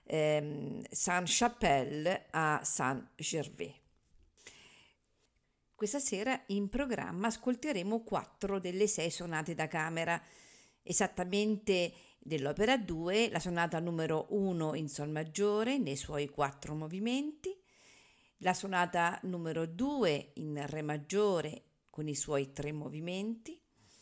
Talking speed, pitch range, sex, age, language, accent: 100 wpm, 155-205 Hz, female, 50-69, Italian, native